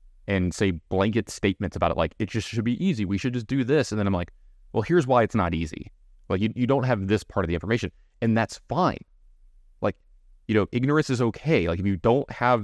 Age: 20-39